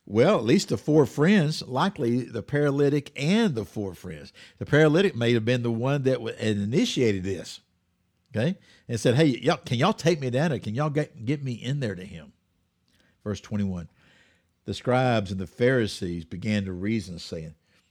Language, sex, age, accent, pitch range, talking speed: English, male, 50-69, American, 95-135 Hz, 180 wpm